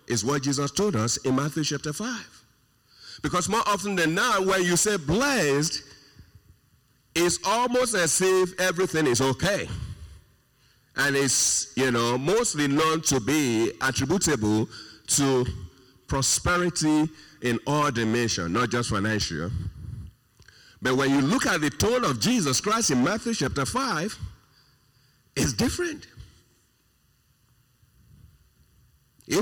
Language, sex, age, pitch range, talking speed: English, male, 50-69, 120-185 Hz, 120 wpm